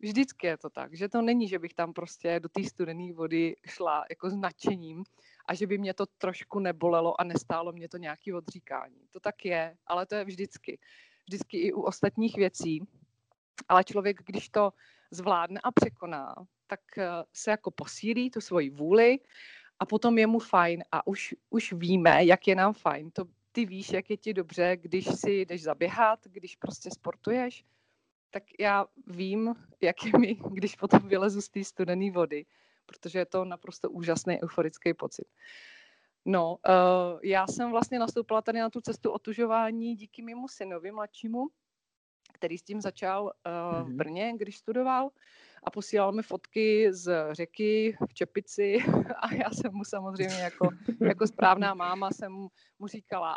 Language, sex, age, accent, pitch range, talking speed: Czech, female, 30-49, native, 175-220 Hz, 165 wpm